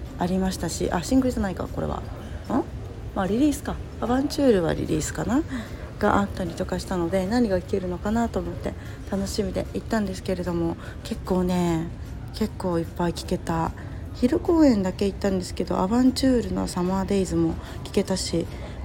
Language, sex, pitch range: Japanese, female, 170-230 Hz